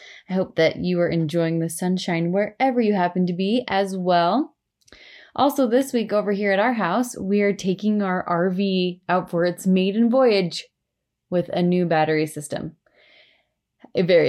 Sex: female